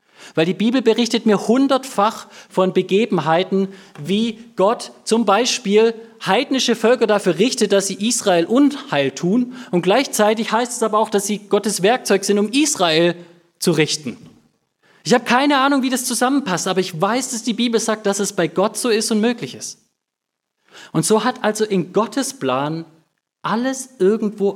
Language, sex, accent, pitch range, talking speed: German, male, German, 155-225 Hz, 165 wpm